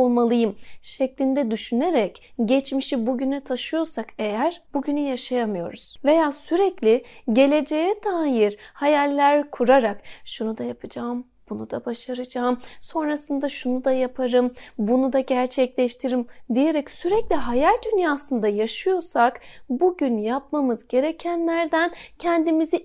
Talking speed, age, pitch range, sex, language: 95 wpm, 30-49, 240-315 Hz, female, Turkish